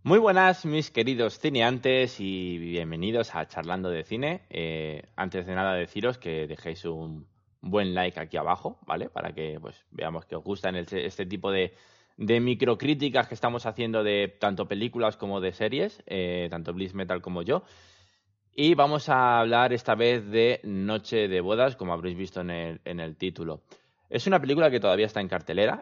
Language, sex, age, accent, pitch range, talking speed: Spanish, male, 20-39, Spanish, 90-115 Hz, 180 wpm